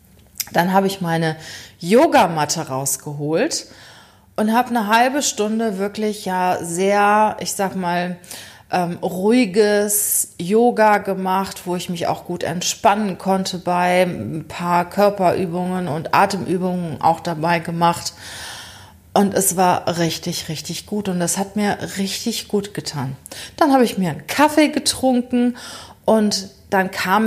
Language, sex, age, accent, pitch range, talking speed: German, female, 30-49, German, 170-220 Hz, 130 wpm